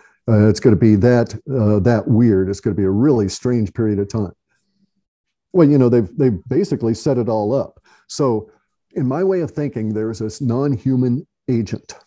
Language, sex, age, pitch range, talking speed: English, male, 50-69, 105-130 Hz, 200 wpm